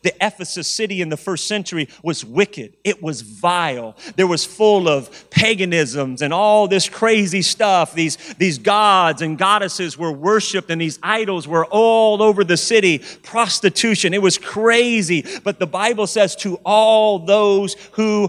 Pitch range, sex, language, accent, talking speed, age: 175-220 Hz, male, English, American, 160 wpm, 40-59